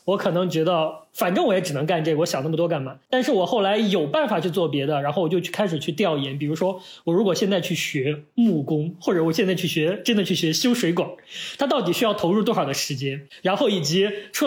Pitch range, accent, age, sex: 170-250 Hz, native, 20-39, male